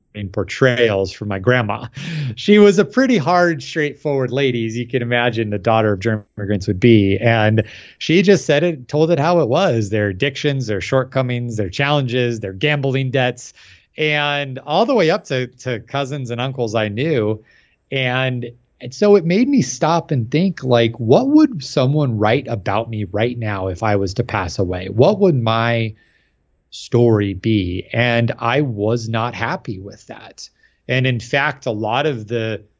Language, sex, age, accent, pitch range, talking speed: English, male, 30-49, American, 110-140 Hz, 175 wpm